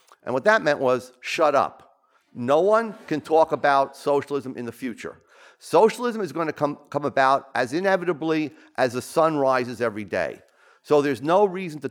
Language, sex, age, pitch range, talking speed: English, male, 50-69, 115-150 Hz, 180 wpm